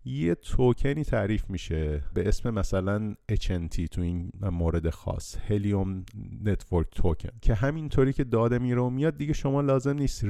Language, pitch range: Persian, 90-120 Hz